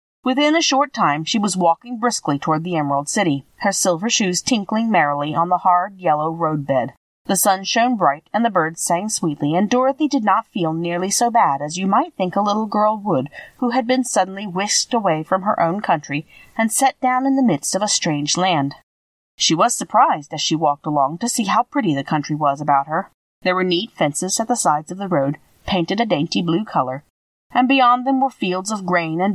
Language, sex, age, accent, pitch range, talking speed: English, female, 40-59, American, 155-225 Hz, 215 wpm